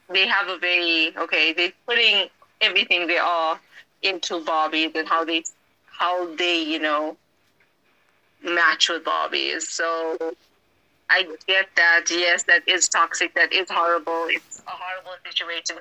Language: English